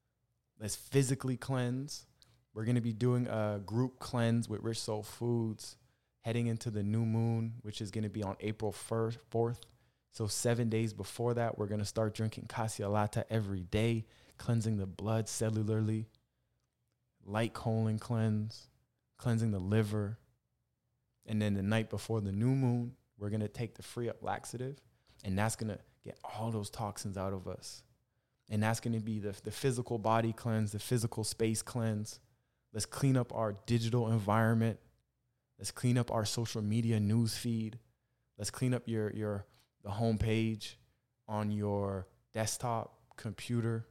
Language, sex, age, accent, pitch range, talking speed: English, male, 20-39, American, 110-120 Hz, 160 wpm